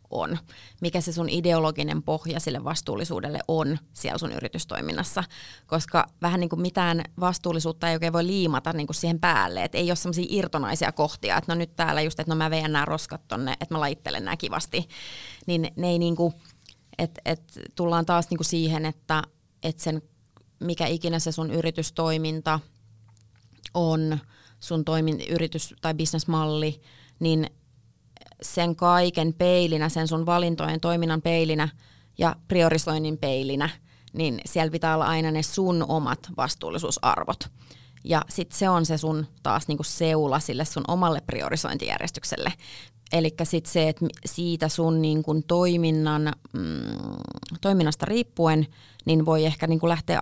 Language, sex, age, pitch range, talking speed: Finnish, female, 30-49, 150-170 Hz, 145 wpm